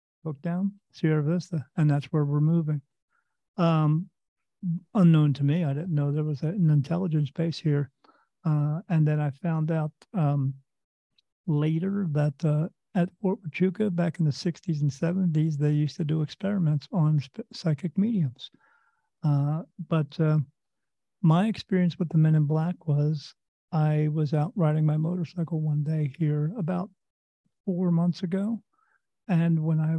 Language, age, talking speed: English, 50-69, 150 wpm